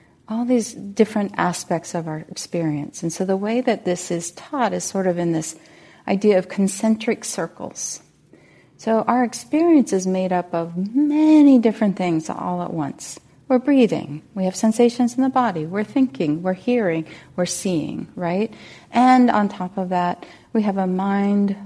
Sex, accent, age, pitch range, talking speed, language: female, American, 40-59, 175-220 Hz, 170 wpm, English